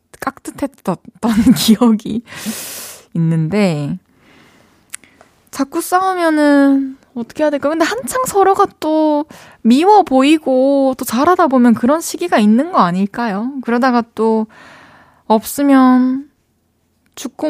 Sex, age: female, 20-39